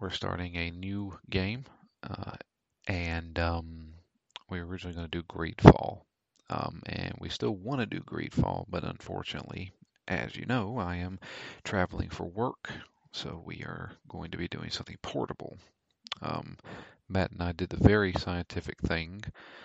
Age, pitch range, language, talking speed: 40-59, 85-100 Hz, English, 160 wpm